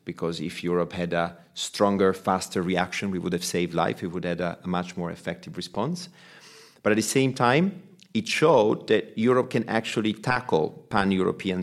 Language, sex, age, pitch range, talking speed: English, male, 40-59, 90-115 Hz, 180 wpm